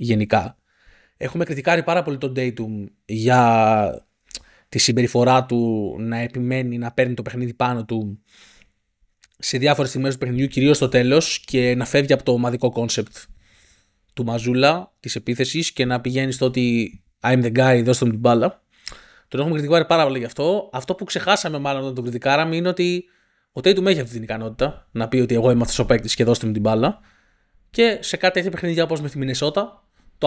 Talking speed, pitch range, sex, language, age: 185 wpm, 120-160 Hz, male, Greek, 20-39